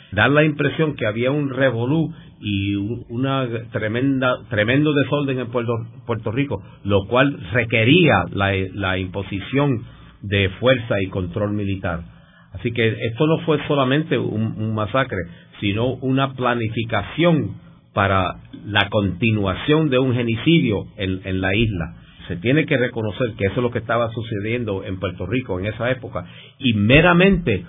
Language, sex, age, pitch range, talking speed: Spanish, male, 50-69, 100-135 Hz, 145 wpm